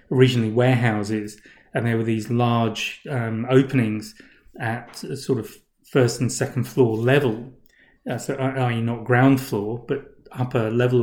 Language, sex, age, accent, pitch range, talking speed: English, male, 30-49, British, 115-135 Hz, 145 wpm